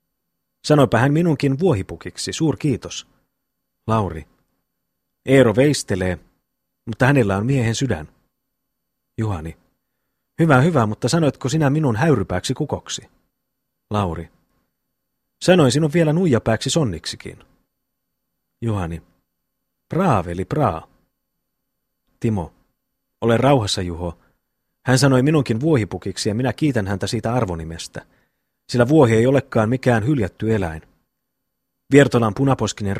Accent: native